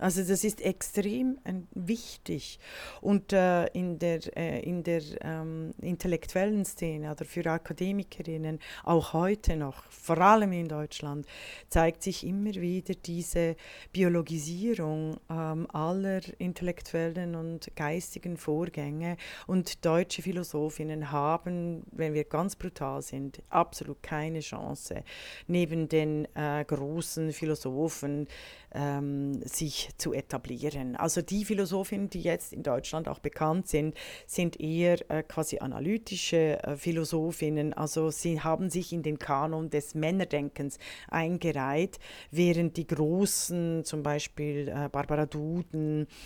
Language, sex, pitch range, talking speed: German, female, 150-175 Hz, 120 wpm